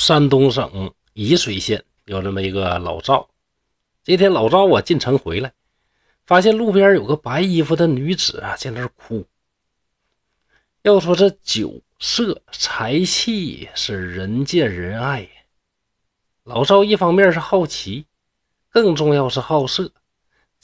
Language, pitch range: Chinese, 110-185 Hz